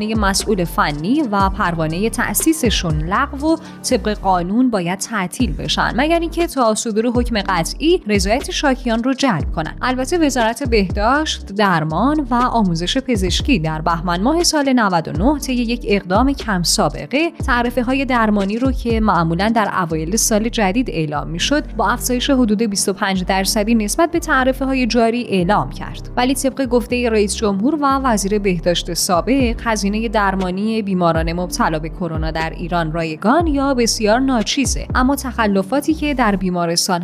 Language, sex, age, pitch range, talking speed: Persian, female, 10-29, 190-260 Hz, 145 wpm